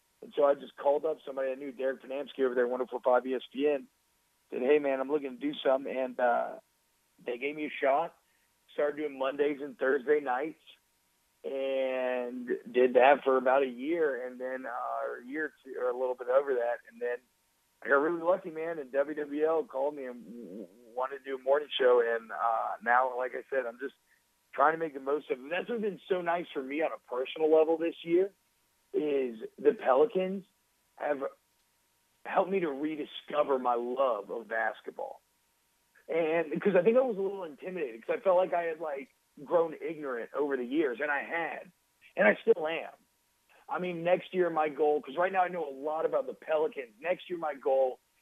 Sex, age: male, 40-59